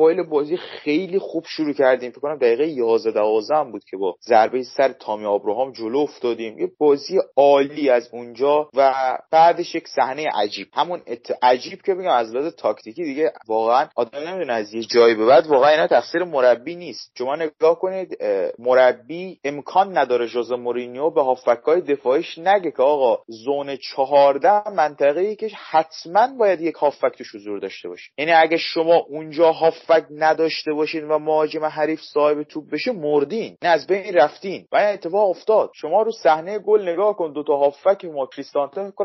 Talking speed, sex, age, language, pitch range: 165 wpm, male, 30-49, Persian, 135-195 Hz